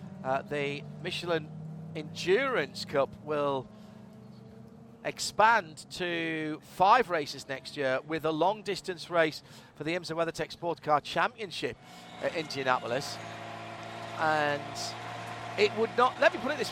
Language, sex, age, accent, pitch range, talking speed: English, male, 40-59, British, 130-175 Hz, 120 wpm